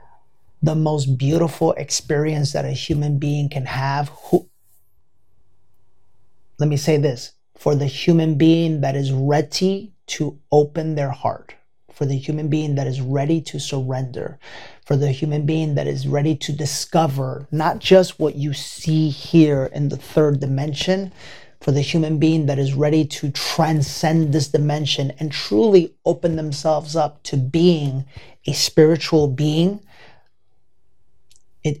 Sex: male